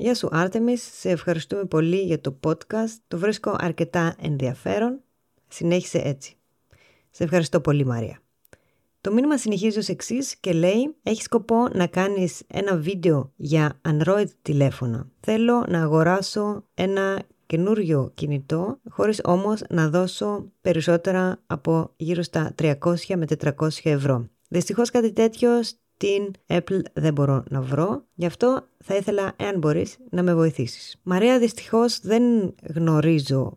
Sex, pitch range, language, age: female, 150-195 Hz, Greek, 20-39